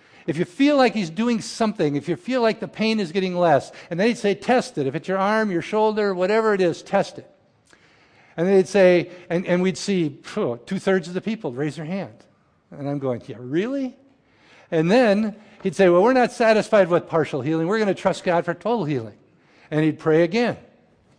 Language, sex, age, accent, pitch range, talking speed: English, male, 50-69, American, 155-210 Hz, 215 wpm